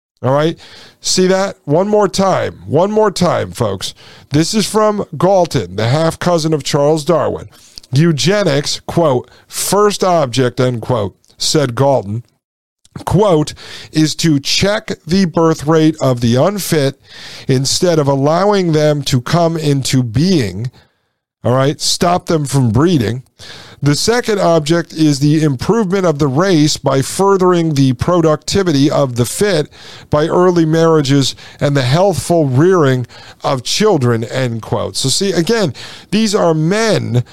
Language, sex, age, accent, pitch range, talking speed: English, male, 50-69, American, 135-175 Hz, 140 wpm